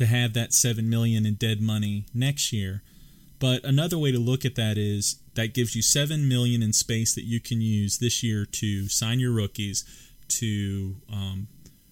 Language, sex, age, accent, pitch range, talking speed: English, male, 30-49, American, 110-130 Hz, 185 wpm